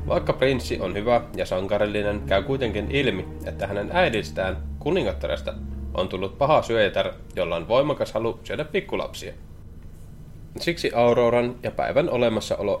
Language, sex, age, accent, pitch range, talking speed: Finnish, male, 20-39, native, 85-115 Hz, 130 wpm